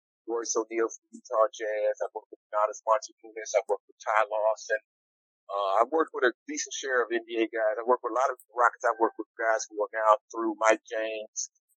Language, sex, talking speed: English, male, 210 wpm